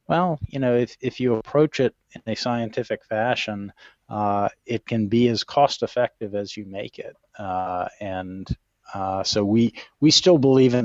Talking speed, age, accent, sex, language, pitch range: 175 wpm, 40-59, American, male, English, 110-125 Hz